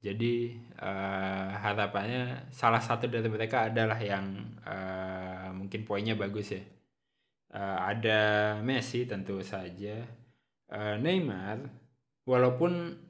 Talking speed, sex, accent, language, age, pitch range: 100 wpm, male, native, Indonesian, 20-39, 105-130 Hz